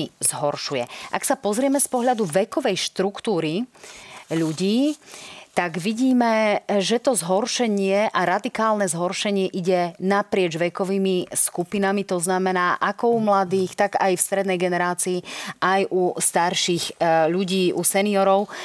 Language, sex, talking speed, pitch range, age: Slovak, female, 120 wpm, 175-215 Hz, 30-49